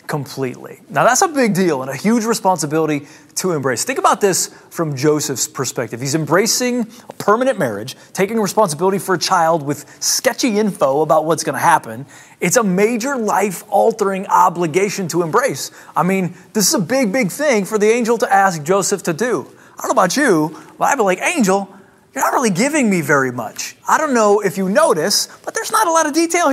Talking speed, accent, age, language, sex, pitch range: 200 wpm, American, 30-49, English, male, 175-240 Hz